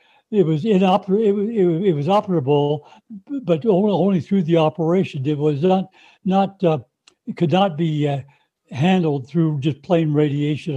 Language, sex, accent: English, male, American